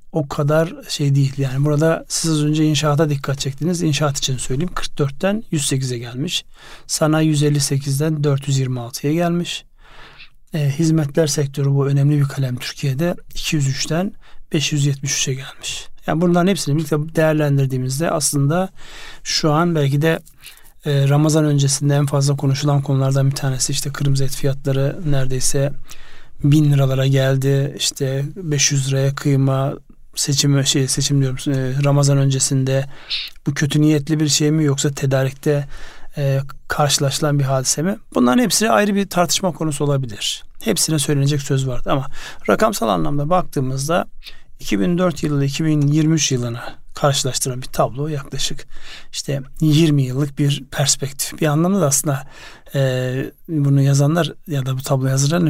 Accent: native